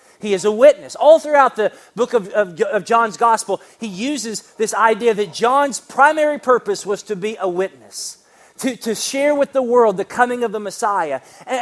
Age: 40-59